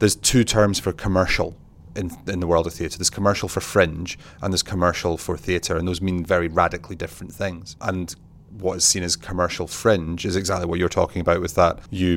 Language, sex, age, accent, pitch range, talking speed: English, male, 30-49, British, 85-100 Hz, 210 wpm